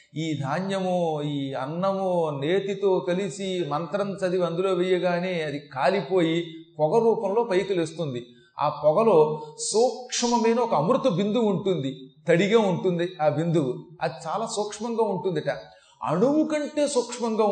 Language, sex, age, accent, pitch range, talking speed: Telugu, male, 30-49, native, 160-220 Hz, 115 wpm